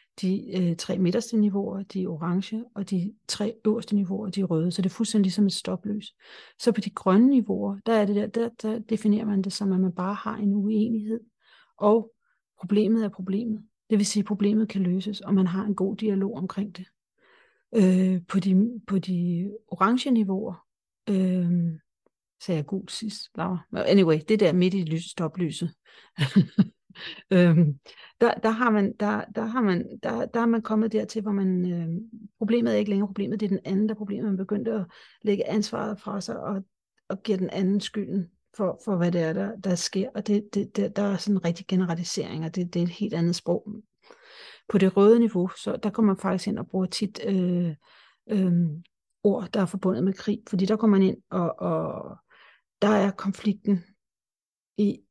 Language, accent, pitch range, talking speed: Danish, native, 185-215 Hz, 200 wpm